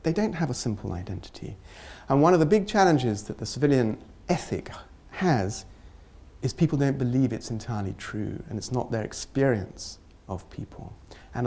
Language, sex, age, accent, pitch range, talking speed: English, male, 40-59, British, 95-135 Hz, 165 wpm